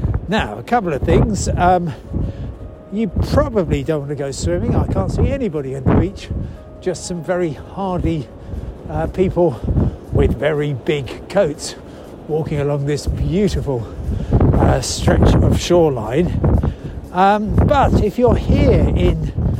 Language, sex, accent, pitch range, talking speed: English, male, British, 115-180 Hz, 135 wpm